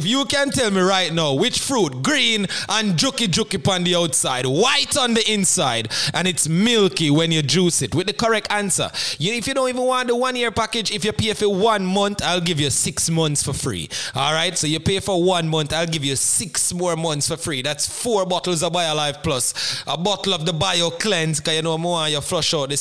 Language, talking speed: English, 230 wpm